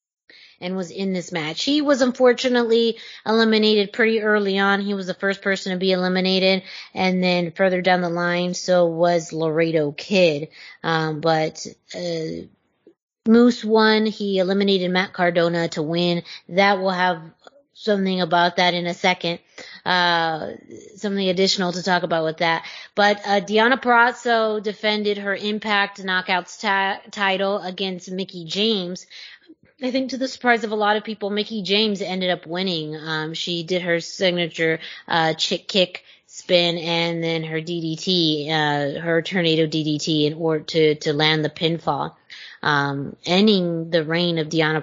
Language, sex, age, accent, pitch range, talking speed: English, female, 20-39, American, 165-200 Hz, 155 wpm